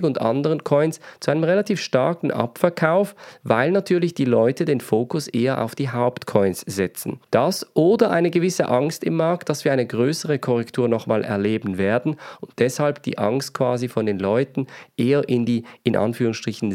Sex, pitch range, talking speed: male, 115-155 Hz, 170 wpm